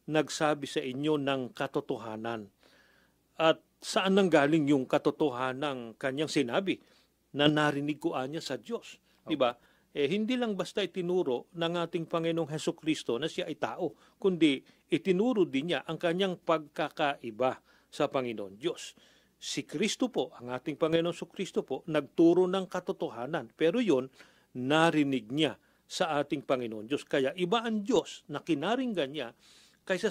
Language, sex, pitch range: Filipino, male, 145-200 Hz